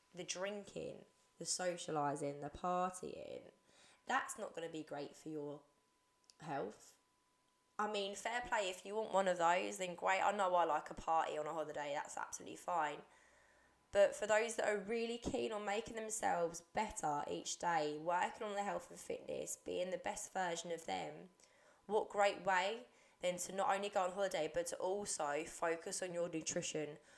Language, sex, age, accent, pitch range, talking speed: English, female, 20-39, British, 165-210 Hz, 180 wpm